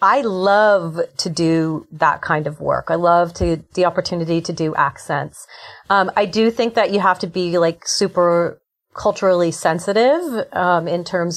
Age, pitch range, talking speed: 40-59, 170-205 Hz, 170 wpm